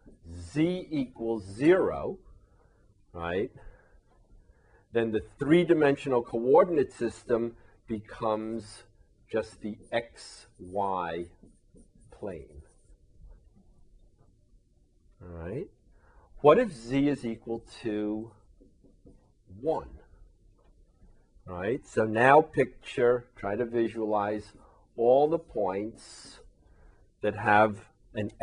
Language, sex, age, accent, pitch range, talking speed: English, male, 50-69, American, 95-125 Hz, 75 wpm